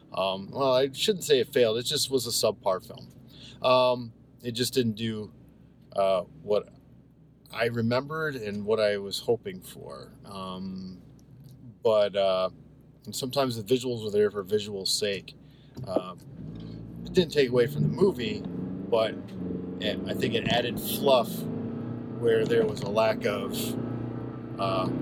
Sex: male